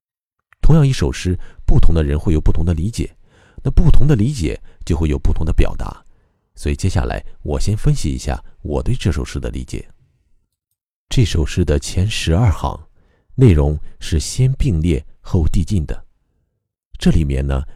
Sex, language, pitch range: male, Chinese, 75-105 Hz